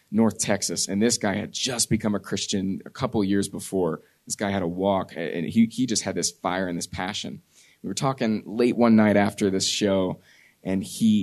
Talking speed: 215 wpm